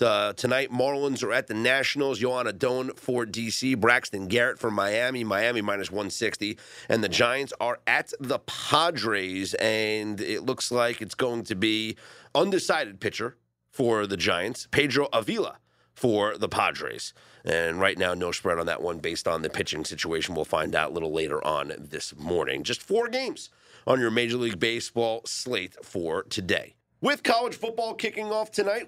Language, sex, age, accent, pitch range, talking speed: English, male, 30-49, American, 110-155 Hz, 170 wpm